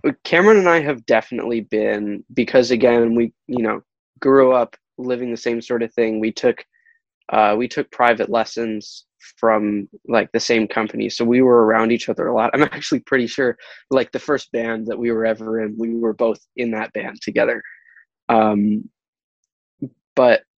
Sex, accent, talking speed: male, American, 180 wpm